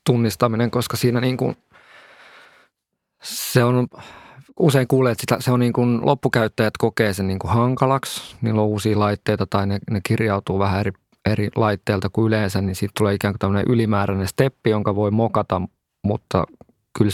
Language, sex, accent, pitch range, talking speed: Finnish, male, native, 100-115 Hz, 170 wpm